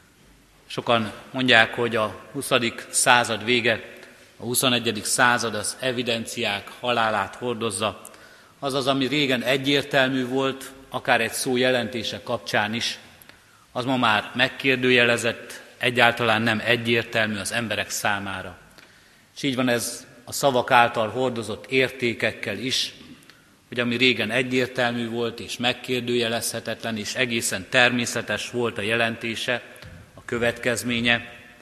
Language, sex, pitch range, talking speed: Hungarian, male, 110-125 Hz, 110 wpm